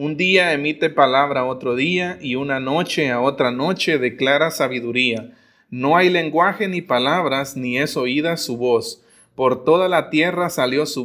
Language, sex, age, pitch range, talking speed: Spanish, male, 30-49, 125-160 Hz, 165 wpm